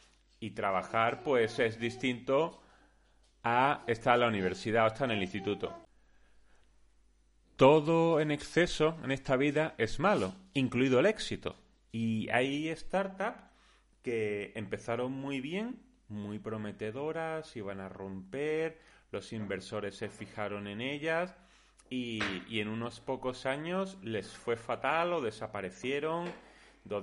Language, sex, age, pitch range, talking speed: Spanish, male, 30-49, 110-145 Hz, 125 wpm